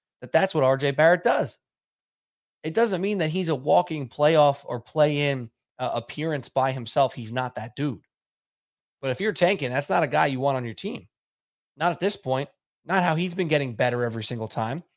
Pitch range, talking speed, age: 120-150 Hz, 195 wpm, 20-39